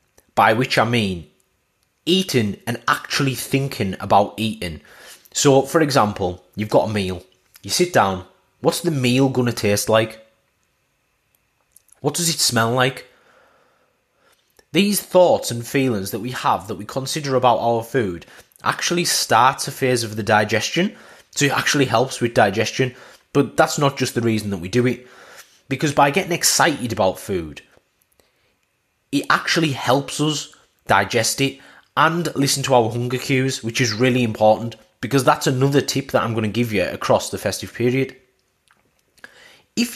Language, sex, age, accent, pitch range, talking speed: English, male, 30-49, British, 110-145 Hz, 160 wpm